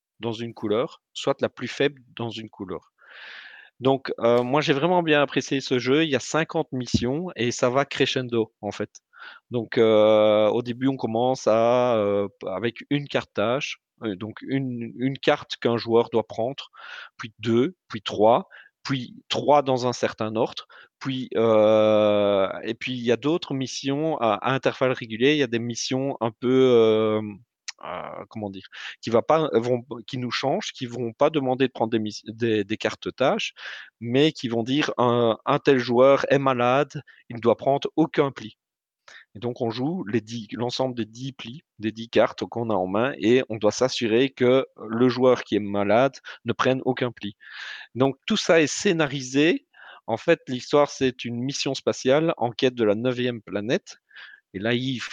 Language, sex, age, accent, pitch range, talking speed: French, male, 30-49, French, 110-135 Hz, 185 wpm